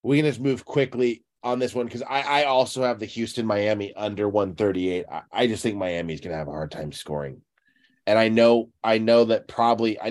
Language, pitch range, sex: English, 110-125 Hz, male